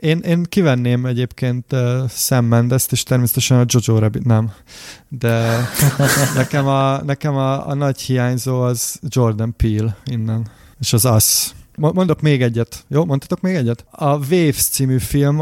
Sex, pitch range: male, 120-140 Hz